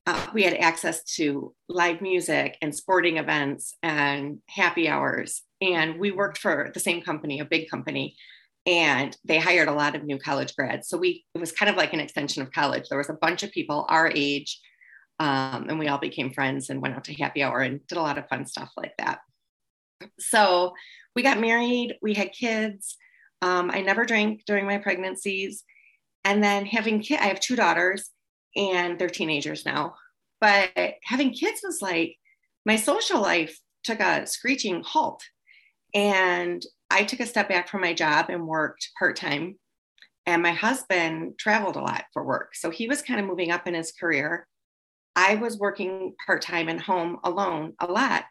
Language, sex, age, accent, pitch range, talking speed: English, female, 30-49, American, 160-210 Hz, 185 wpm